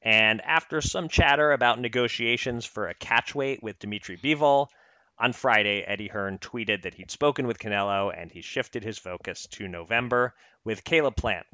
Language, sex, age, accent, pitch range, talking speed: English, male, 30-49, American, 95-120 Hz, 165 wpm